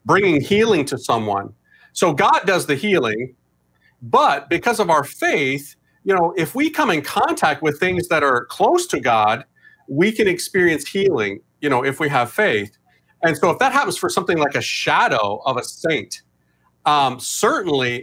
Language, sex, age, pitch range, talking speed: English, male, 40-59, 130-185 Hz, 175 wpm